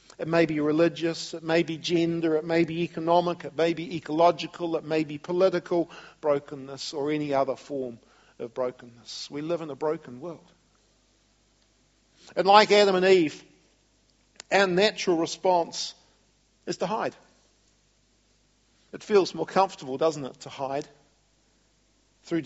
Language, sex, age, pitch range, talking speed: English, male, 50-69, 145-185 Hz, 140 wpm